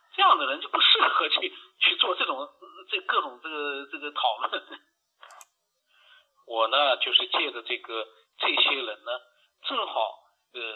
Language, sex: Chinese, male